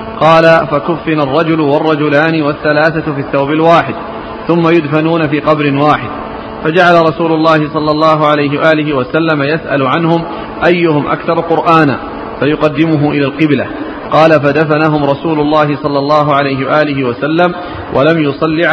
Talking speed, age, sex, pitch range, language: 130 wpm, 40-59, male, 145-160 Hz, Arabic